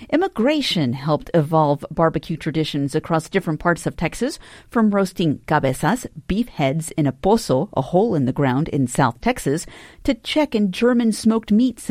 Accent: American